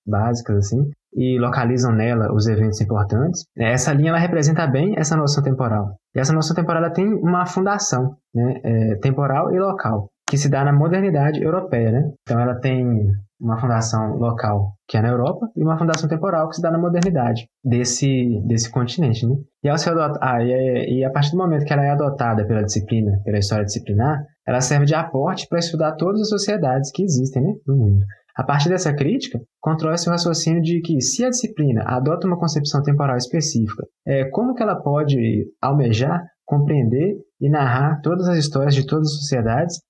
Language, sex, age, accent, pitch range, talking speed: Portuguese, male, 20-39, Brazilian, 120-165 Hz, 185 wpm